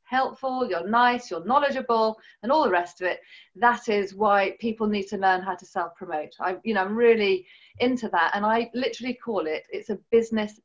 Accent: British